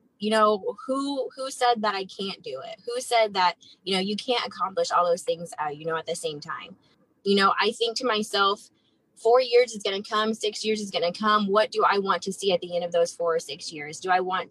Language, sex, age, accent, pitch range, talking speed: English, female, 20-39, American, 180-215 Hz, 265 wpm